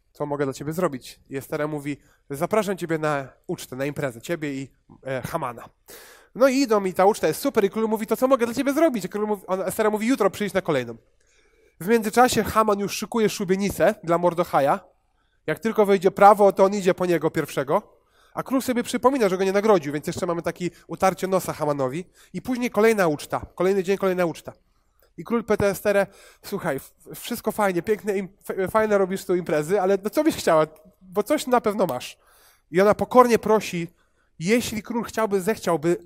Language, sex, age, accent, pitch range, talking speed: Polish, male, 20-39, native, 155-215 Hz, 195 wpm